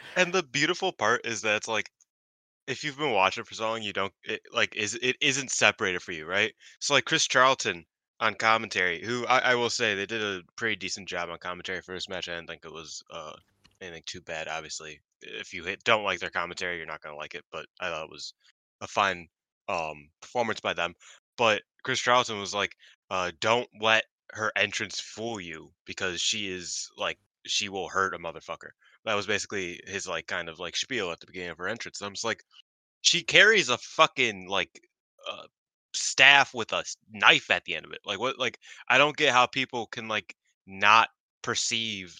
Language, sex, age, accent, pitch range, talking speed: English, male, 20-39, American, 95-125 Hz, 205 wpm